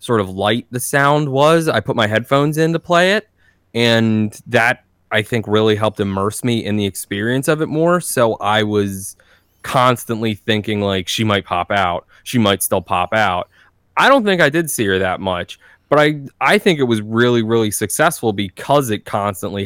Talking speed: 195 wpm